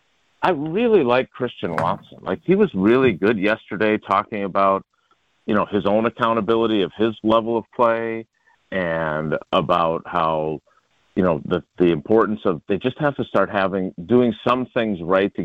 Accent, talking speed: American, 165 wpm